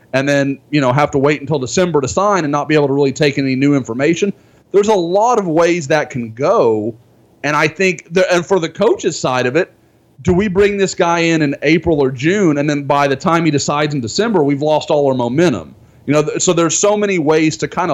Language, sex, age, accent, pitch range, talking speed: English, male, 30-49, American, 130-165 Hz, 250 wpm